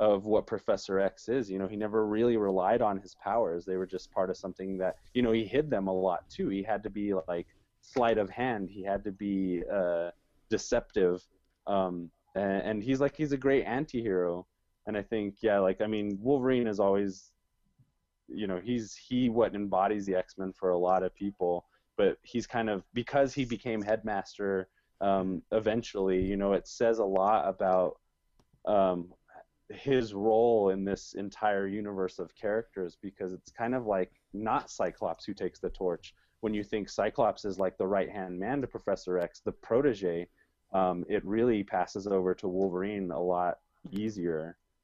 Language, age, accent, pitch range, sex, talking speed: English, 20-39, American, 90-110 Hz, male, 180 wpm